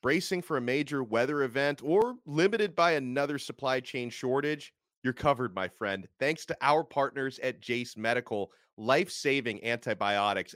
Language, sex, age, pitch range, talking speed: English, male, 30-49, 110-150 Hz, 150 wpm